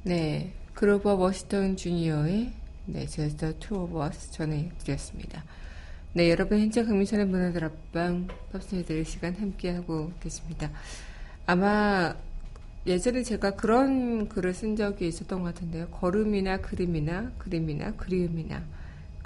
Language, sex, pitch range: Korean, female, 155-190 Hz